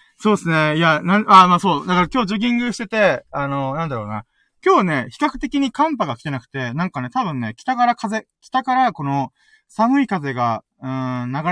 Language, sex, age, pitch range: Japanese, male, 20-39, 130-205 Hz